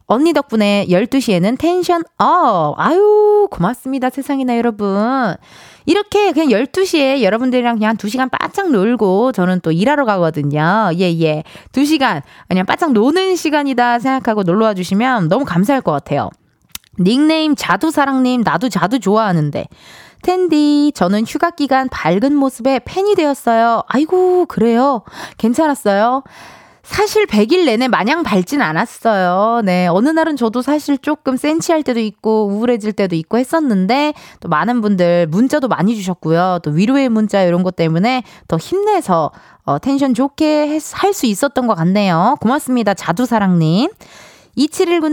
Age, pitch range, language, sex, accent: 20-39, 205-310 Hz, Korean, female, native